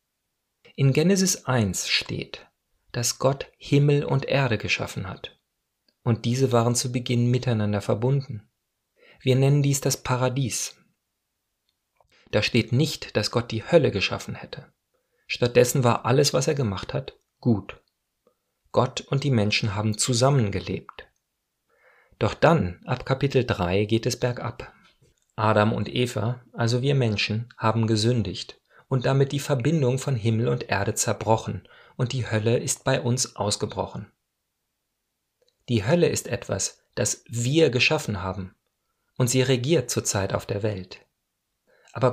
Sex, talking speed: male, 135 wpm